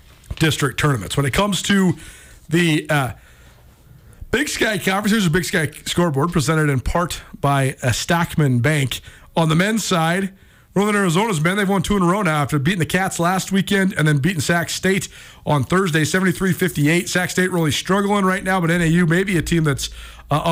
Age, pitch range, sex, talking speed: 40-59, 155-205 Hz, male, 185 wpm